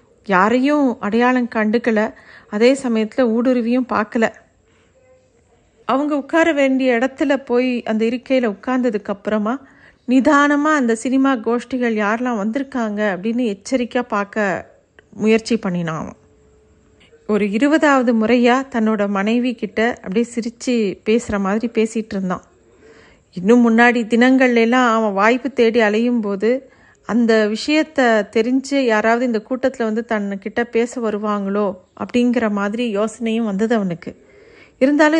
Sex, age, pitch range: female, 50-69, 210-255 Hz